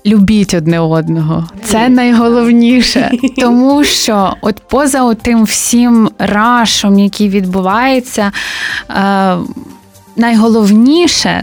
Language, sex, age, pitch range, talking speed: Ukrainian, female, 20-39, 195-240 Hz, 80 wpm